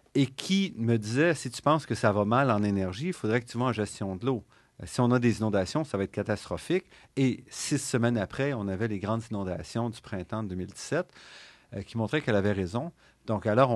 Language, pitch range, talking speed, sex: French, 105-135 Hz, 220 wpm, male